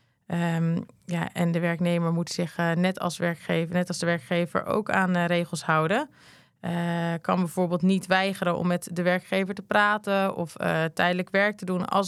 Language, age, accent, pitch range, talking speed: Dutch, 20-39, Dutch, 160-185 Hz, 190 wpm